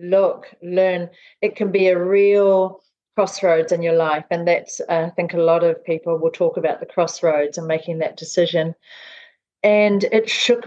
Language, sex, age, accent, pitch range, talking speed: English, female, 40-59, Australian, 175-205 Hz, 180 wpm